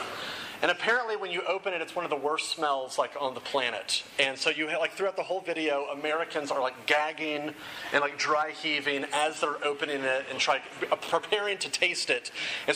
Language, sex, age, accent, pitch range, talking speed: English, male, 30-49, American, 150-195 Hz, 205 wpm